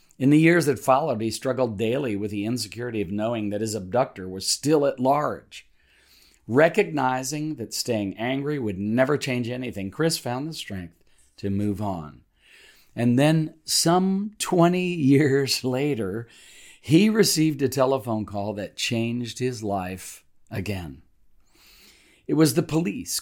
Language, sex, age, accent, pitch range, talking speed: English, male, 40-59, American, 105-140 Hz, 140 wpm